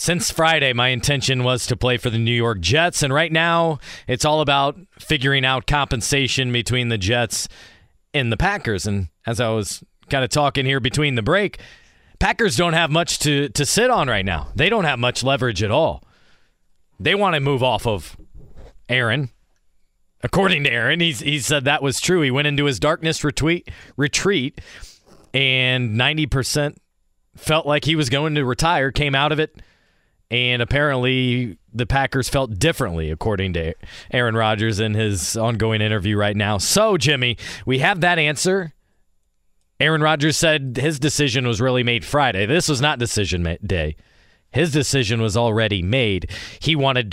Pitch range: 115-150 Hz